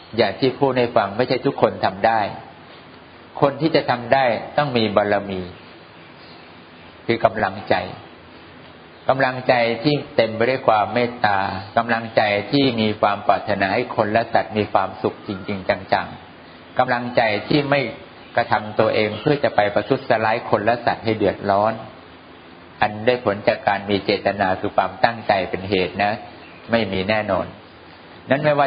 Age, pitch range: 60-79, 100-130 Hz